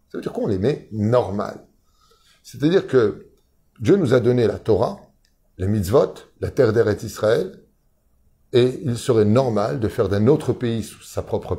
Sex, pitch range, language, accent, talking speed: male, 105-145 Hz, French, French, 170 wpm